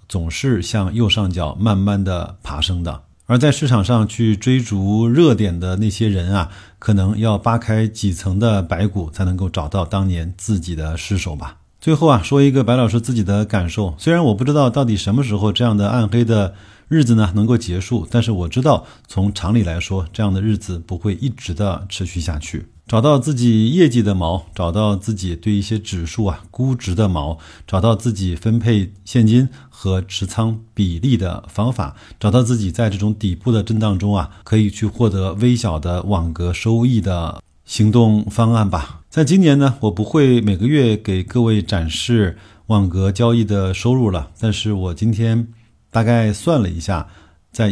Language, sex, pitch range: Chinese, male, 95-115 Hz